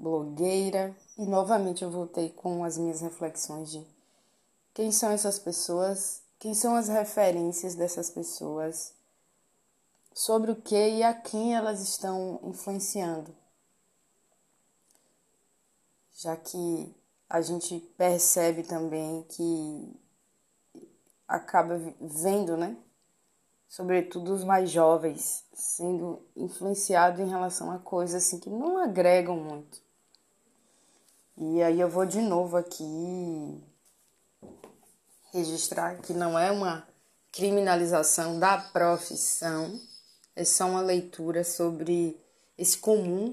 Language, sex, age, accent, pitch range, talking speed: Portuguese, female, 20-39, Brazilian, 165-190 Hz, 105 wpm